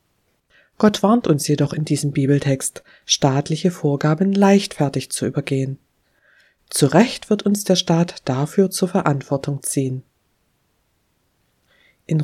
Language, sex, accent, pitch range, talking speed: German, female, German, 140-180 Hz, 115 wpm